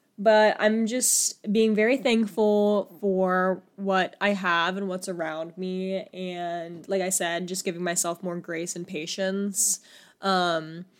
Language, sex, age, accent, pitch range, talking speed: English, female, 10-29, American, 185-215 Hz, 140 wpm